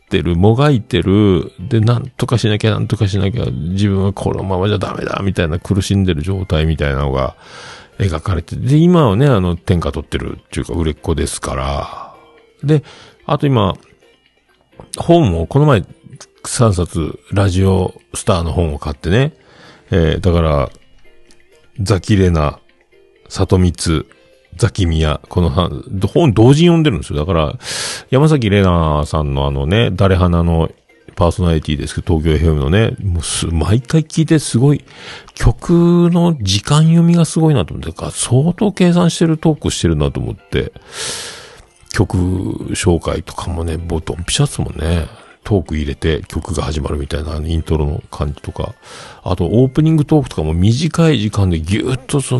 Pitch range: 80-130 Hz